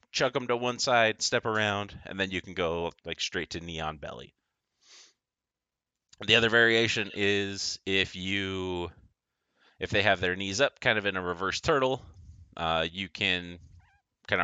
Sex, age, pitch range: male, 30-49, 80-105 Hz